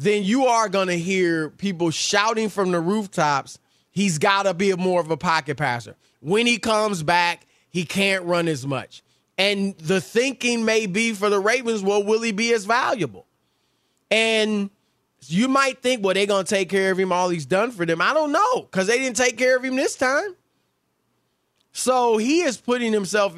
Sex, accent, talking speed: male, American, 200 wpm